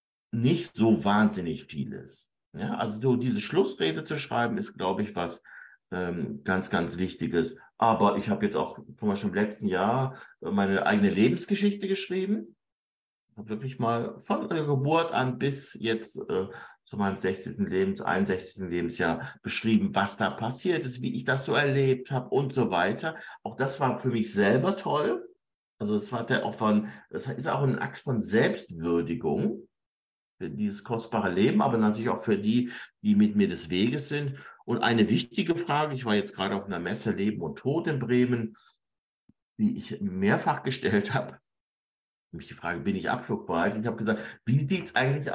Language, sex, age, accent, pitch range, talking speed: German, male, 50-69, German, 110-170 Hz, 175 wpm